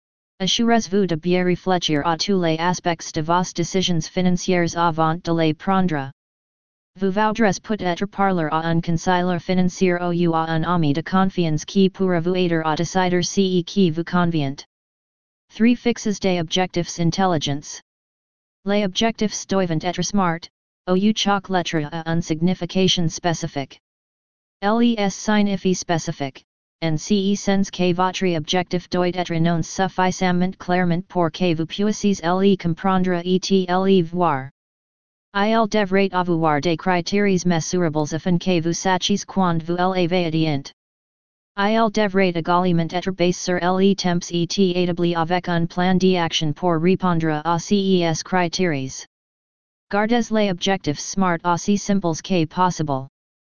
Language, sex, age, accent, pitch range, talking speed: English, female, 30-49, American, 165-190 Hz, 140 wpm